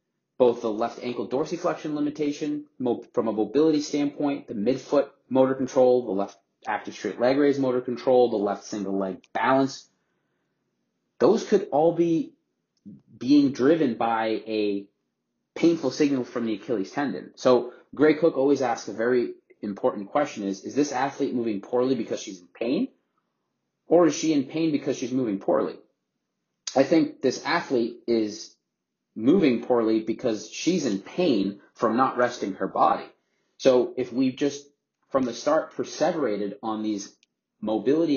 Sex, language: male, English